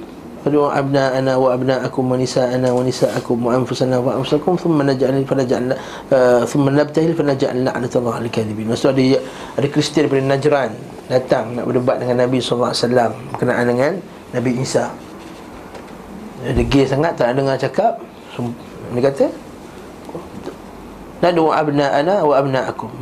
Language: Malay